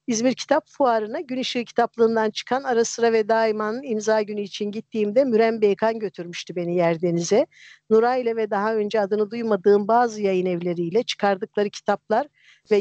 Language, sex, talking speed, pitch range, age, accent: Turkish, female, 145 wpm, 195-230 Hz, 50-69, native